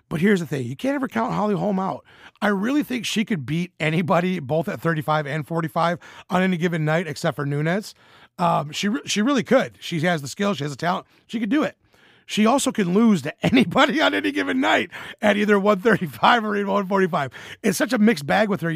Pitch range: 165-200 Hz